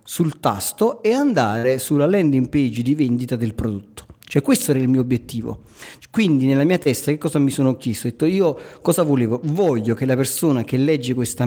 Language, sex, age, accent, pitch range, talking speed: Italian, male, 40-59, native, 130-185 Hz, 200 wpm